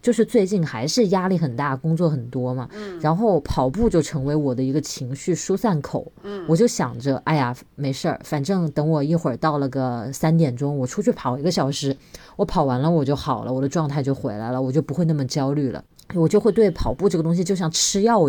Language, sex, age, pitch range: Chinese, female, 20-39, 140-175 Hz